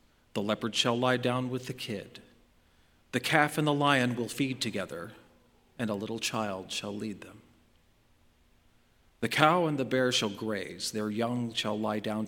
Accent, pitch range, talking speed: American, 105-135 Hz, 170 wpm